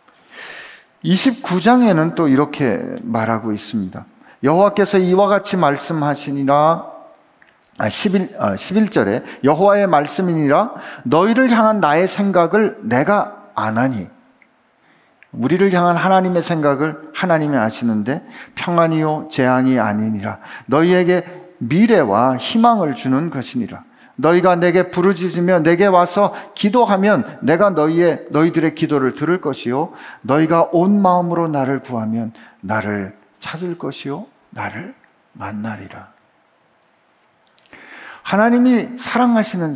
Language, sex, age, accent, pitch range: Korean, male, 50-69, native, 140-205 Hz